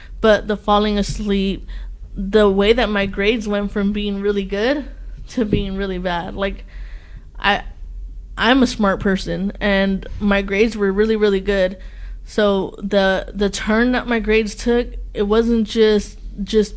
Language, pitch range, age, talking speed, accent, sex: English, 190-210 Hz, 20-39, 155 wpm, American, female